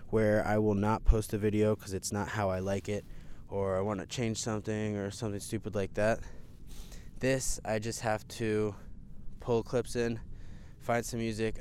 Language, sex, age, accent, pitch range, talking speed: English, male, 20-39, American, 95-110 Hz, 185 wpm